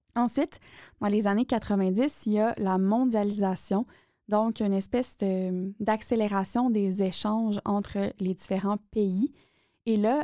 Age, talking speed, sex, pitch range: 20-39, 135 wpm, female, 200-225 Hz